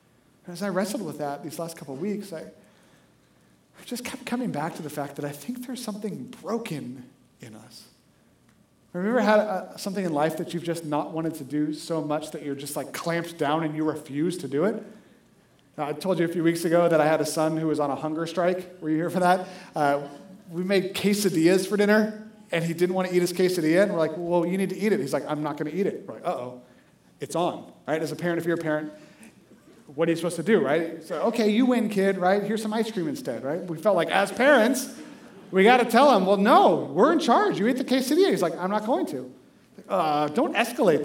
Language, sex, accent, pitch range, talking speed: English, male, American, 155-220 Hz, 245 wpm